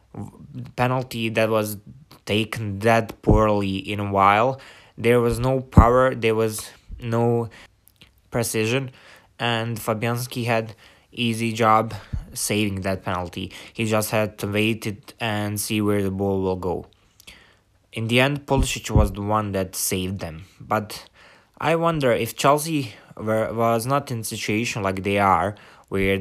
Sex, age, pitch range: male, 20-39, 100-120 Hz